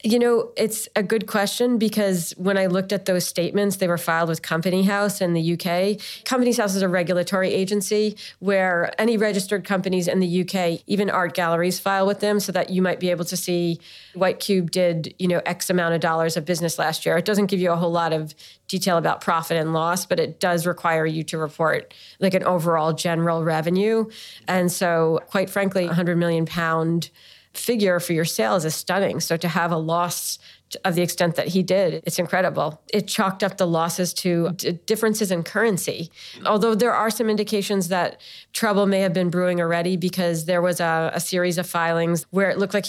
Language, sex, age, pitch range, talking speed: English, female, 40-59, 170-195 Hz, 205 wpm